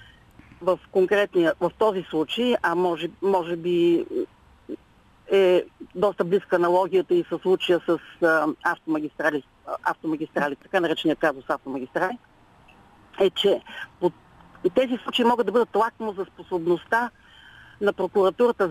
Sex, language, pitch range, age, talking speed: female, Bulgarian, 160-200 Hz, 50-69, 120 wpm